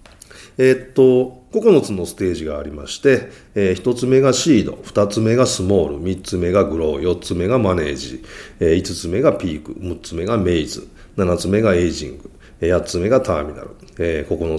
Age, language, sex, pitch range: 40-59, Japanese, male, 85-130 Hz